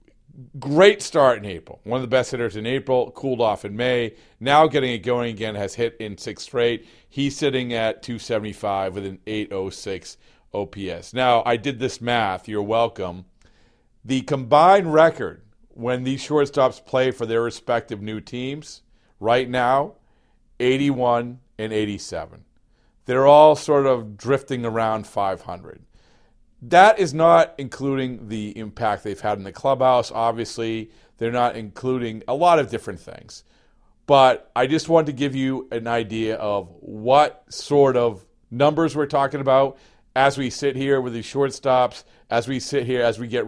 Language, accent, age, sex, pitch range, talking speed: English, American, 40-59, male, 110-140 Hz, 160 wpm